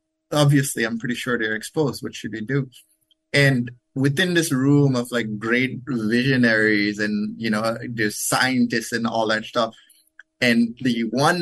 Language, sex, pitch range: English, male, 110-145 Hz